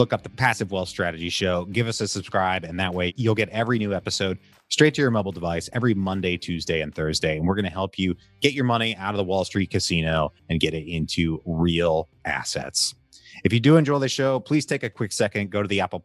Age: 30-49